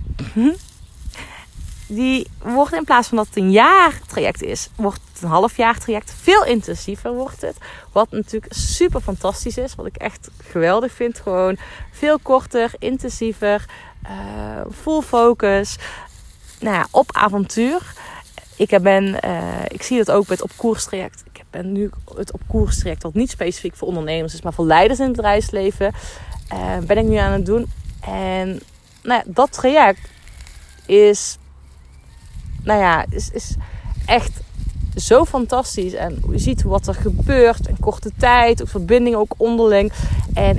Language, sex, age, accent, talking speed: Dutch, female, 30-49, Dutch, 150 wpm